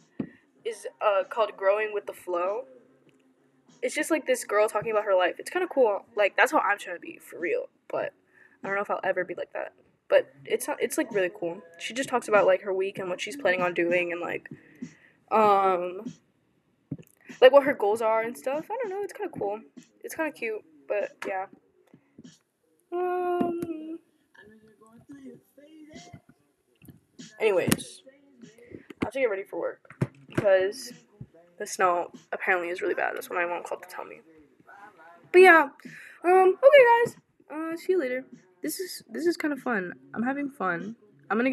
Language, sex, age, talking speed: English, female, 10-29, 180 wpm